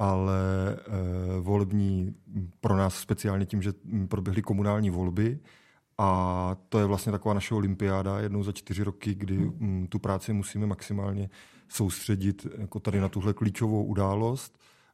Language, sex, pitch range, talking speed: Czech, male, 100-115 Hz, 135 wpm